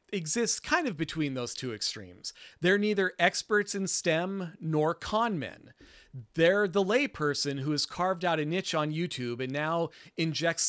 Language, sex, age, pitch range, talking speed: English, male, 40-59, 135-195 Hz, 155 wpm